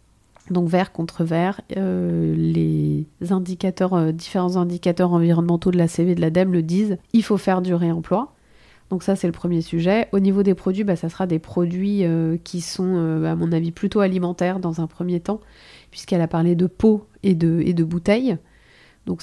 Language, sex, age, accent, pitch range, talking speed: French, female, 30-49, French, 165-195 Hz, 195 wpm